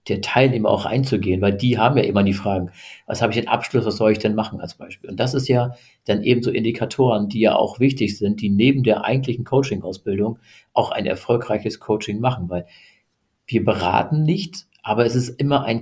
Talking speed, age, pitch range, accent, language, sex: 210 wpm, 50-69, 105-125 Hz, German, German, male